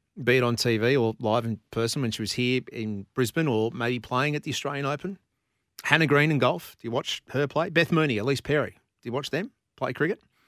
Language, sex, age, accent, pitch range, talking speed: English, male, 40-59, Australian, 110-150 Hz, 230 wpm